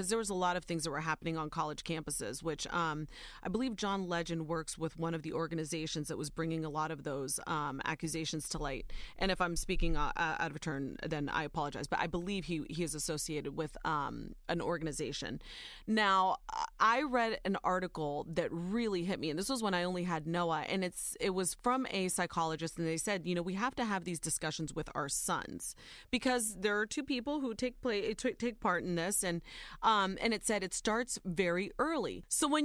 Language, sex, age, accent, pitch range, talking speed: English, female, 30-49, American, 165-235 Hz, 220 wpm